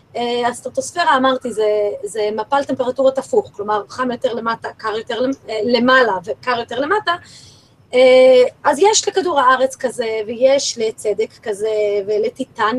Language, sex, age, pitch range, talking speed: Hebrew, female, 20-39, 235-310 Hz, 120 wpm